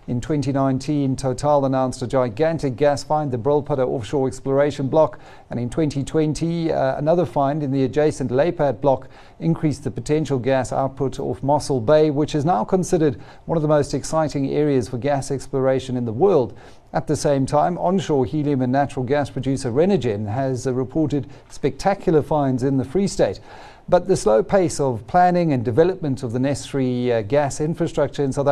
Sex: male